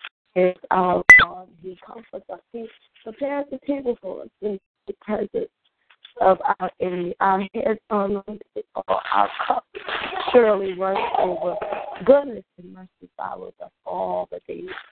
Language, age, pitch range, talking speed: English, 30-49, 185-245 Hz, 145 wpm